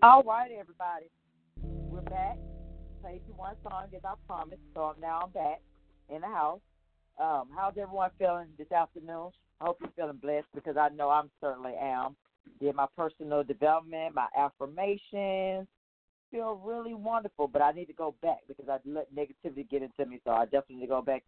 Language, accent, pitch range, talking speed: English, American, 145-205 Hz, 185 wpm